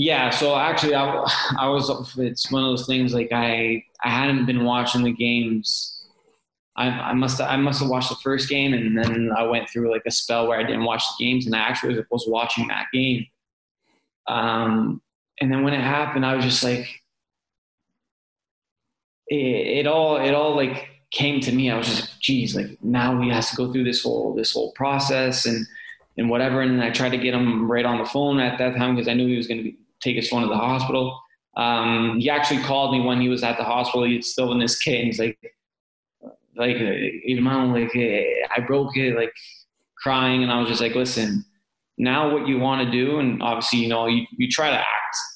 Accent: American